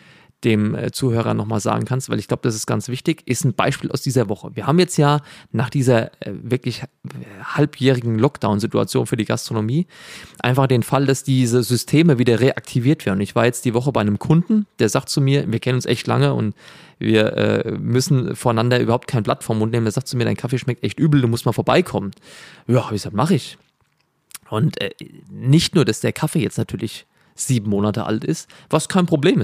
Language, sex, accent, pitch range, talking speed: German, male, German, 115-145 Hz, 205 wpm